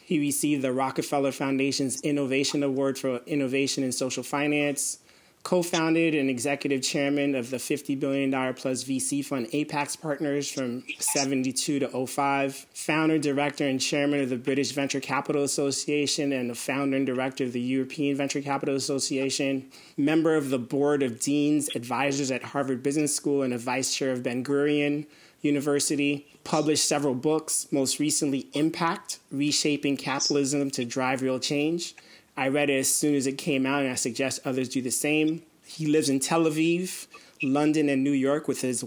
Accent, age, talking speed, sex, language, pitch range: American, 30-49, 165 wpm, male, English, 135-150 Hz